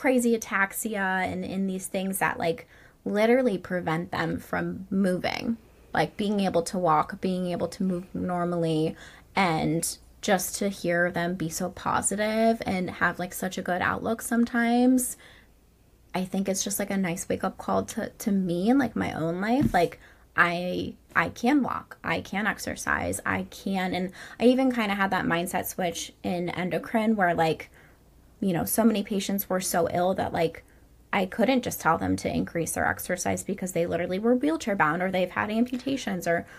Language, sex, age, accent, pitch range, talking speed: English, female, 20-39, American, 170-205 Hz, 180 wpm